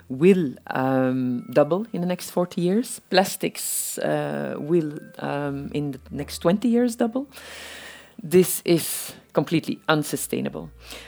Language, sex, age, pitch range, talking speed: English, female, 40-59, 130-175 Hz, 120 wpm